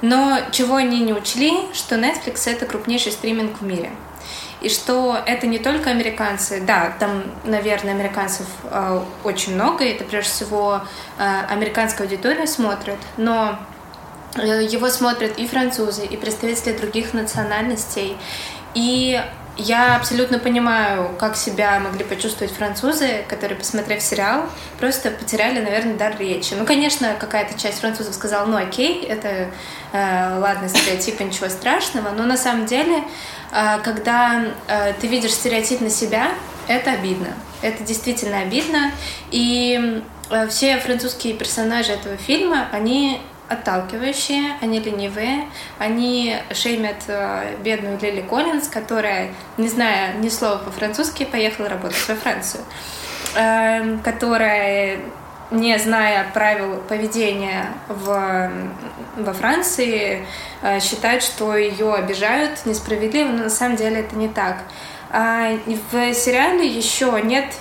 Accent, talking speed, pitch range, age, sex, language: native, 120 wpm, 205-245 Hz, 20-39, female, Russian